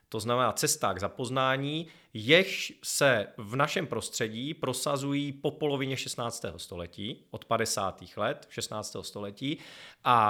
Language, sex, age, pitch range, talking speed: Czech, male, 30-49, 105-140 Hz, 120 wpm